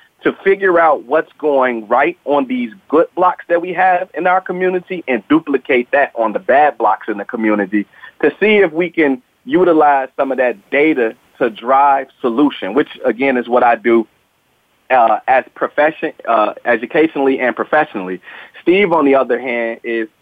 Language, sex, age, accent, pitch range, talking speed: English, male, 30-49, American, 120-165 Hz, 170 wpm